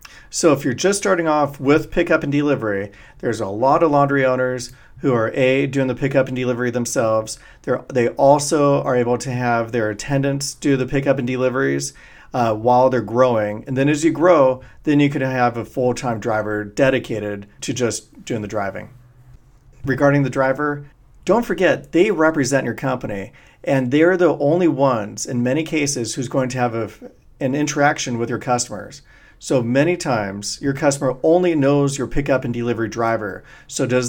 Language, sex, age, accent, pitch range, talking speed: English, male, 40-59, American, 120-145 Hz, 180 wpm